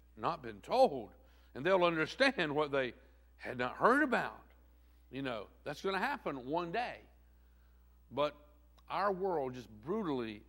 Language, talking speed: English, 145 wpm